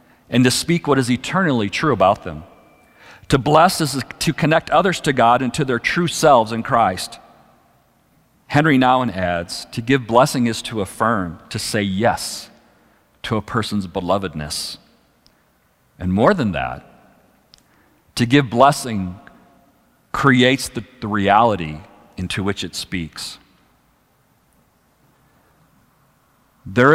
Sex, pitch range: male, 100-130 Hz